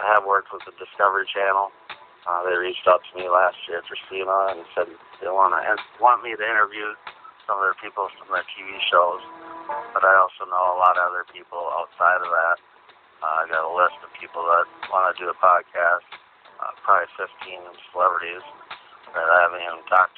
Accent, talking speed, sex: American, 200 wpm, male